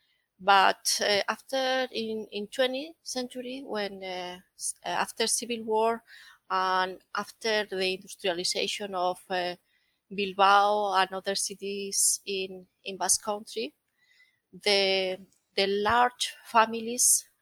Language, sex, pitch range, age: English, female, 185-220 Hz, 30-49